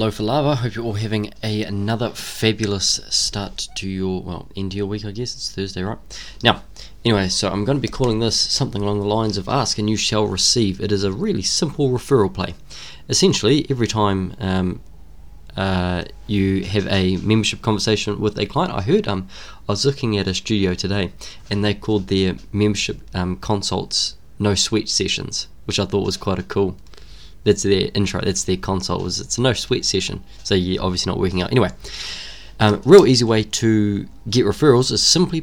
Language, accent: English, Australian